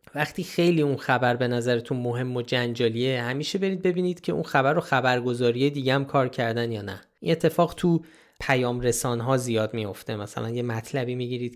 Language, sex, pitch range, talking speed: Persian, male, 120-145 Hz, 180 wpm